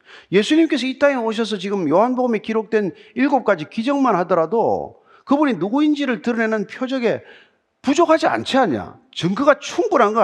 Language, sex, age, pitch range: Korean, male, 40-59, 210-280 Hz